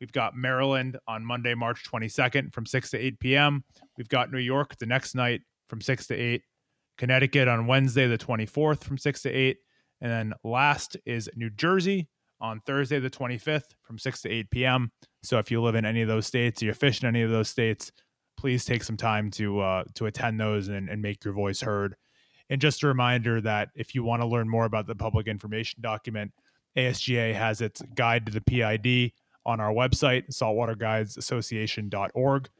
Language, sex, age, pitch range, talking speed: English, male, 20-39, 110-130 Hz, 195 wpm